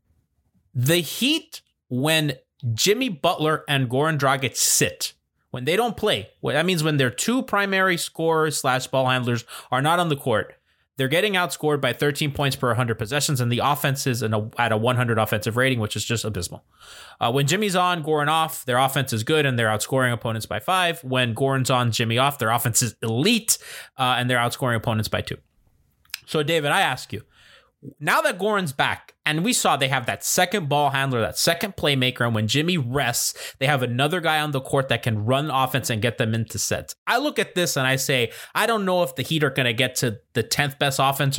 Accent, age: American, 20-39